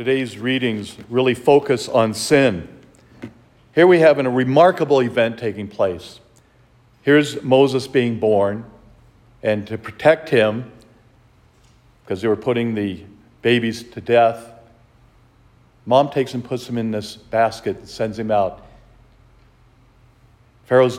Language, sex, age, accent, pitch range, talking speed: English, male, 50-69, American, 115-155 Hz, 125 wpm